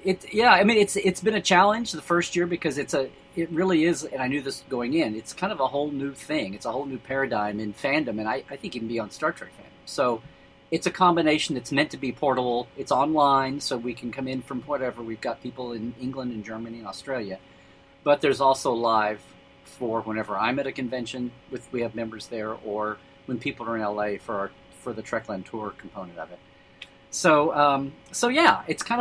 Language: English